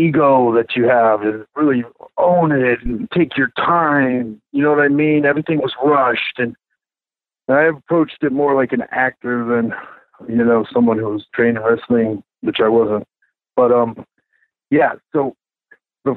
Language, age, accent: English, 50-69, American